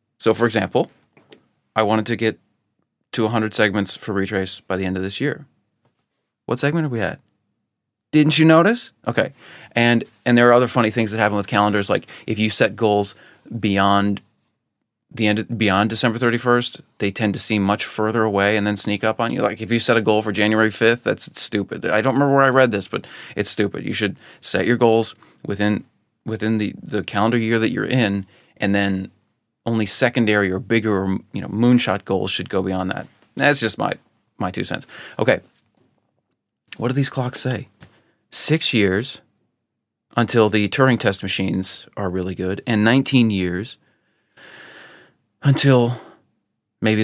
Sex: male